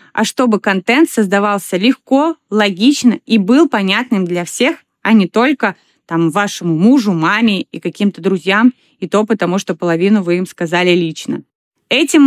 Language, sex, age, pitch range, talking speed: Russian, female, 20-39, 190-250 Hz, 145 wpm